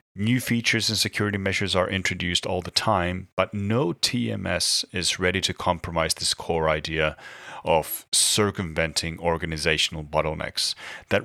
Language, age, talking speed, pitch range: English, 30-49, 135 wpm, 85-105 Hz